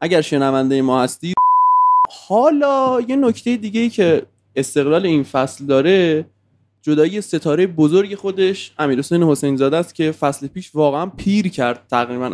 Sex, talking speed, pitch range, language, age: male, 140 wpm, 125-175 Hz, Persian, 20-39